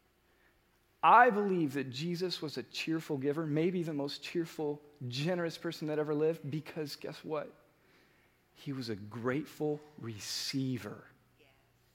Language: English